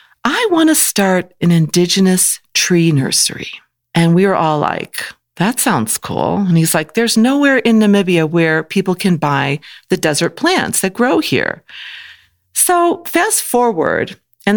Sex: female